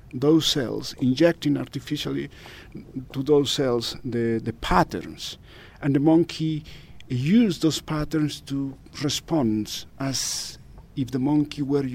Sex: male